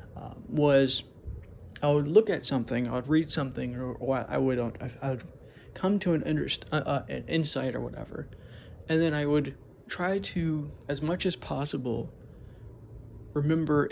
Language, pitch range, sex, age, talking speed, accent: English, 115-150 Hz, male, 30-49, 150 wpm, American